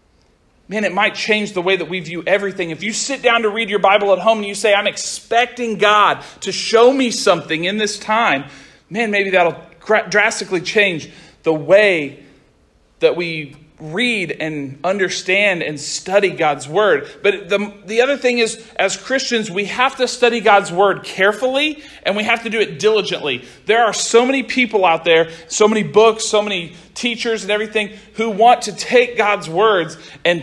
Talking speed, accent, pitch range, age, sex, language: 185 wpm, American, 165-220 Hz, 40-59, male, English